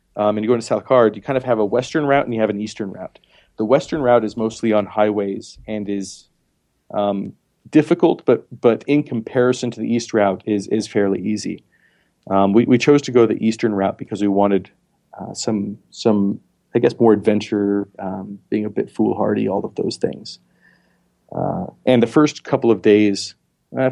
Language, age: English, 30-49